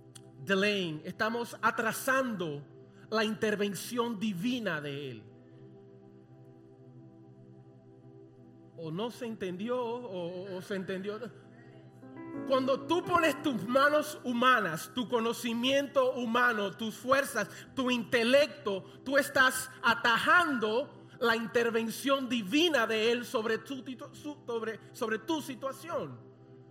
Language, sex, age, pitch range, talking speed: English, male, 30-49, 175-250 Hz, 90 wpm